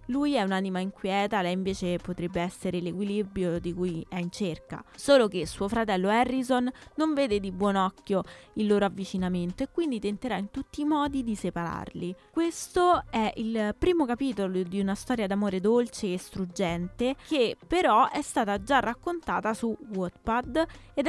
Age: 20-39